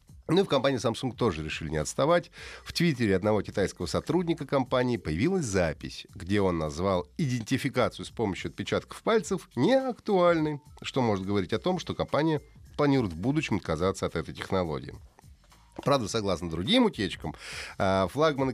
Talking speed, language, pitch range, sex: 145 wpm, Russian, 100-140 Hz, male